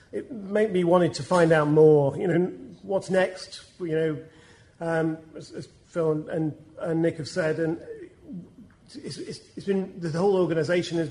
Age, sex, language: 40-59, male, English